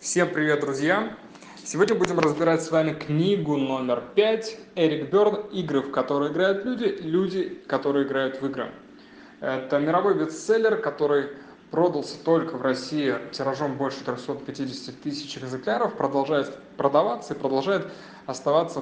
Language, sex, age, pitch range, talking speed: Russian, male, 20-39, 135-165 Hz, 135 wpm